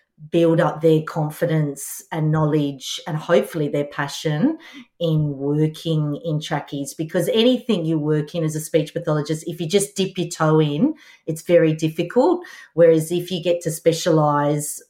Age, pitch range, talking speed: 40-59, 155-185 Hz, 155 wpm